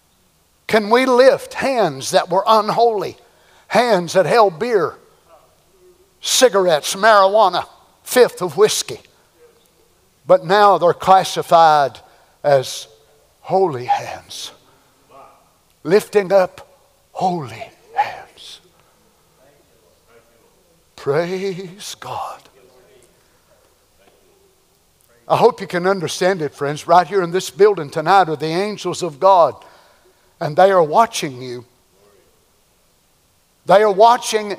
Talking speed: 95 wpm